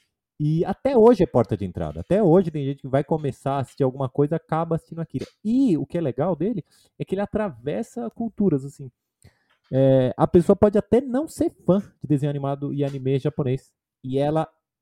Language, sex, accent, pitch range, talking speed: Portuguese, male, Brazilian, 130-175 Hz, 200 wpm